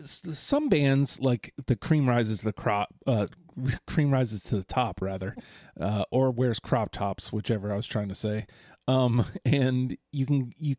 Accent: American